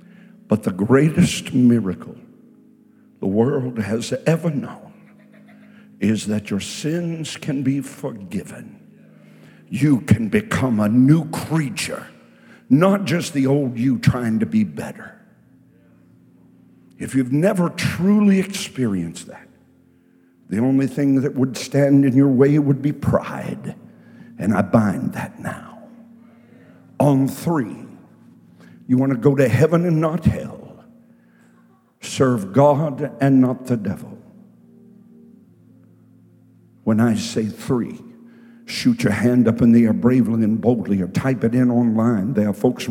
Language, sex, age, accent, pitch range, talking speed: English, male, 60-79, American, 115-175 Hz, 130 wpm